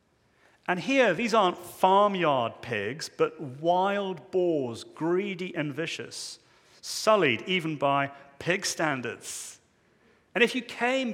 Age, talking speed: 40-59, 115 wpm